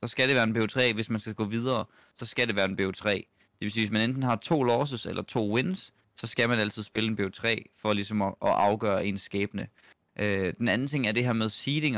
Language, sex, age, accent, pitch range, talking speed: Danish, male, 20-39, native, 105-130 Hz, 275 wpm